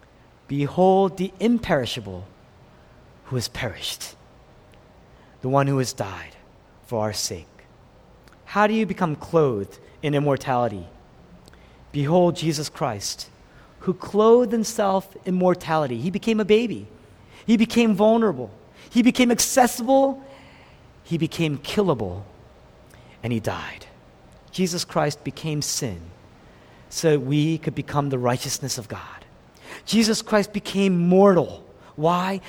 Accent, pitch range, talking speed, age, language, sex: American, 135-215 Hz, 115 wpm, 40-59, English, male